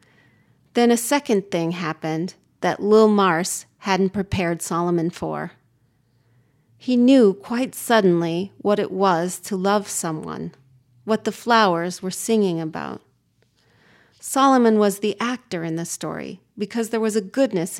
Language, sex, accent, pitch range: English, female, American, 155-215 Hz